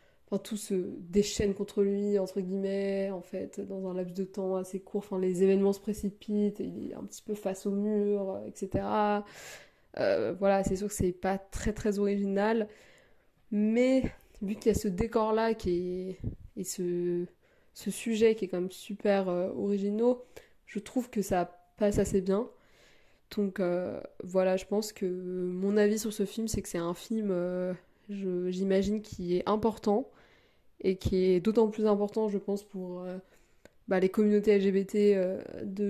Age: 20-39